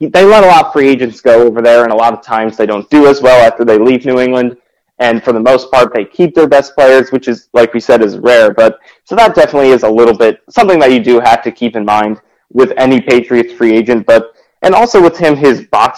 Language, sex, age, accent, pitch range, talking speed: English, male, 20-39, American, 115-130 Hz, 265 wpm